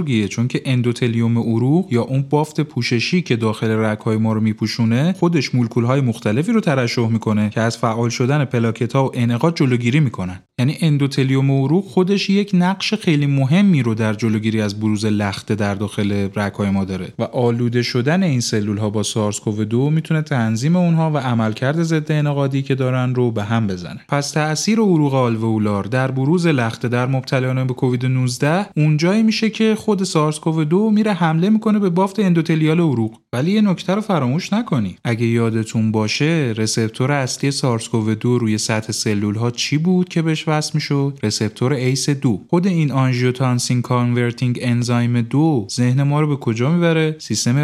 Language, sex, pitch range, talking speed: Persian, male, 115-155 Hz, 175 wpm